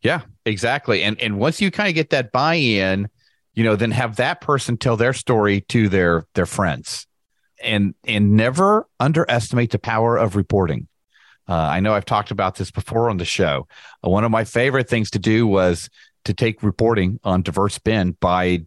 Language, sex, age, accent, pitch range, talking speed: English, male, 40-59, American, 105-160 Hz, 190 wpm